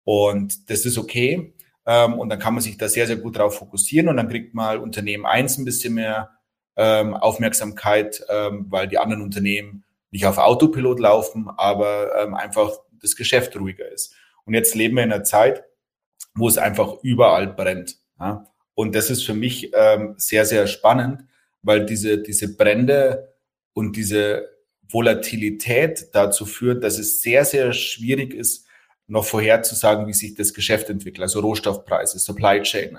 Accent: German